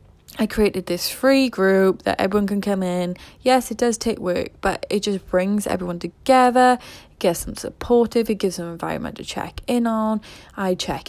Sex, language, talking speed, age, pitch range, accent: female, English, 195 wpm, 20-39, 175-215 Hz, British